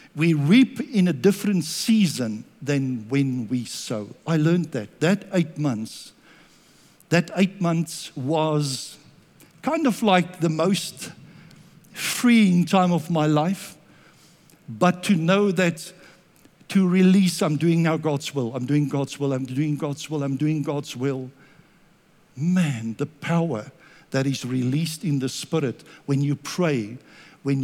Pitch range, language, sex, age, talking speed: 150-215 Hz, English, male, 60-79, 145 wpm